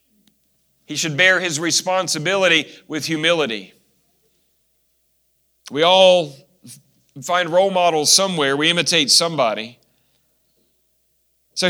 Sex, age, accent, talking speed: male, 50-69, American, 85 wpm